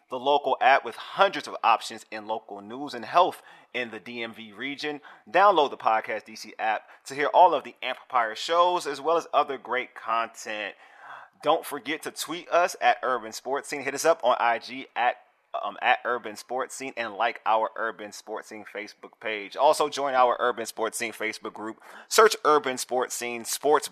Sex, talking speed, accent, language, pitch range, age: male, 190 wpm, American, English, 120-155 Hz, 30-49